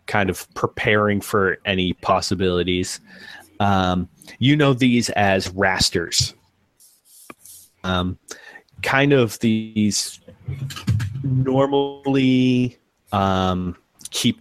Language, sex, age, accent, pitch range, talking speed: English, male, 30-49, American, 95-110 Hz, 80 wpm